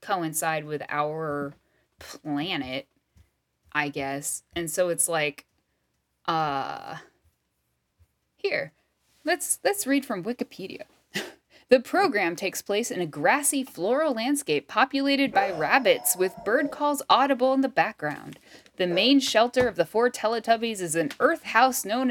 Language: English